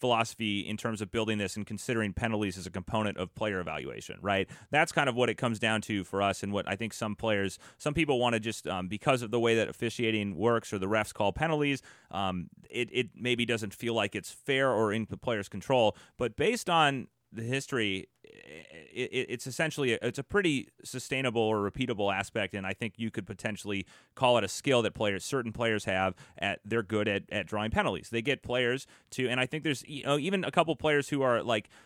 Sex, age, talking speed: male, 30-49, 220 wpm